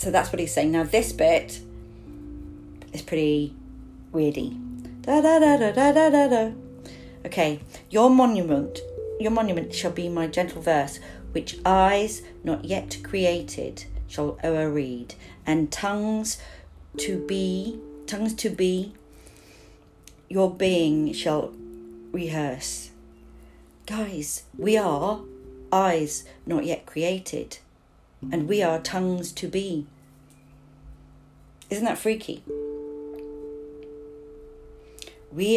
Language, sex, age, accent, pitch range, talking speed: English, female, 40-59, British, 125-190 Hz, 110 wpm